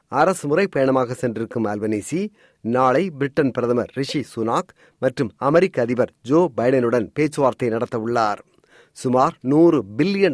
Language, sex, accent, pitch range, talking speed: Tamil, male, native, 130-170 Hz, 110 wpm